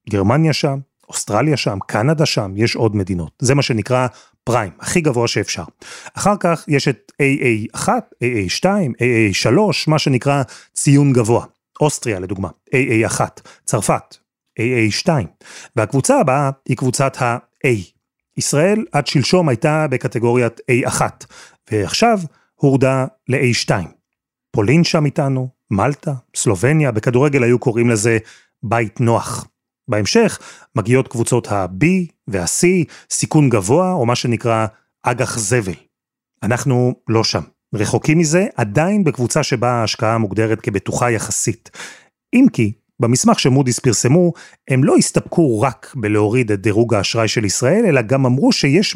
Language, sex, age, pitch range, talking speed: Hebrew, male, 30-49, 115-150 Hz, 125 wpm